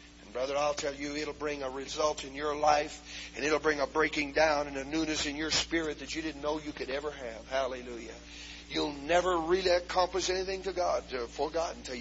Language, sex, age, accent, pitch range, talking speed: English, male, 50-69, American, 105-155 Hz, 210 wpm